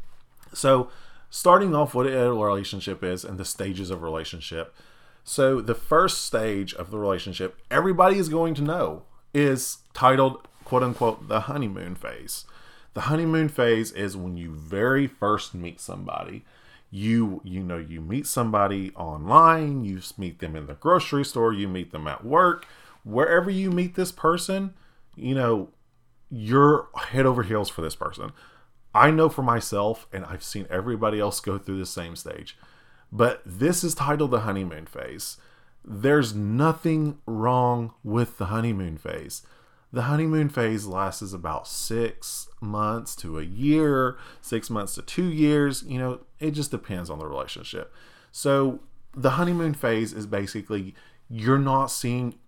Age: 30-49